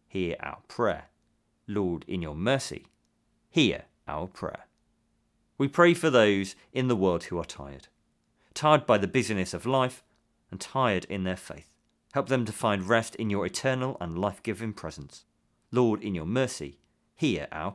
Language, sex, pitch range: English, male, 90-130 Hz